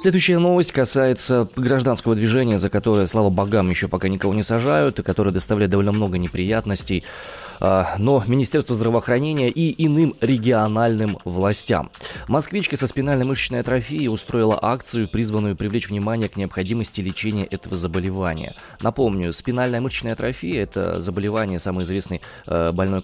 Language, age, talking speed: Russian, 20-39, 135 wpm